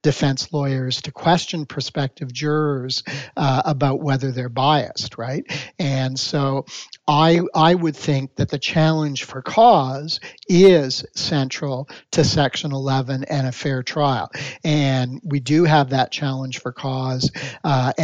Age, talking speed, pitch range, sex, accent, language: 50-69, 135 wpm, 135-155 Hz, male, American, English